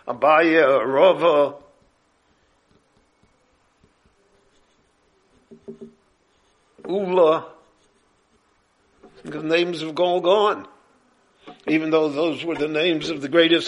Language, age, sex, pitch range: English, 60-79, male, 155-200 Hz